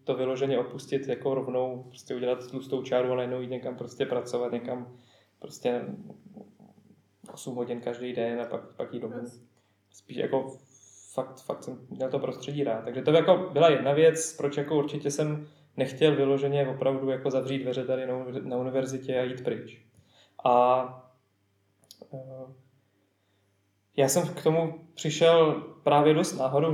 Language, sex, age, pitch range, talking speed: Czech, male, 20-39, 125-140 Hz, 155 wpm